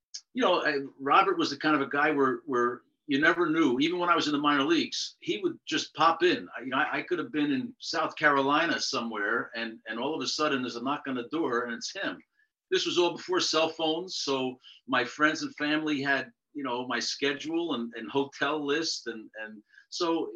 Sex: male